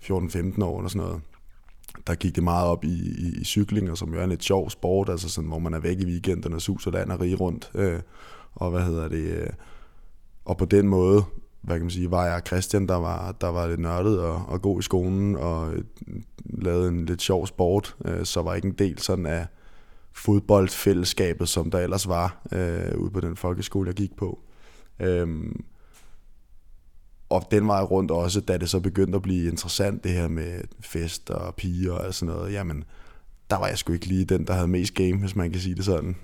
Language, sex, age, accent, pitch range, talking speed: Danish, male, 20-39, native, 85-100 Hz, 215 wpm